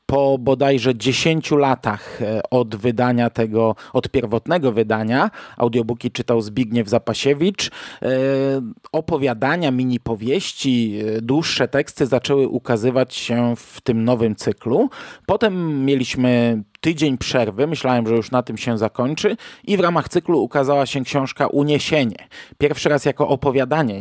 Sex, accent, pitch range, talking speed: male, native, 120-145 Hz, 120 wpm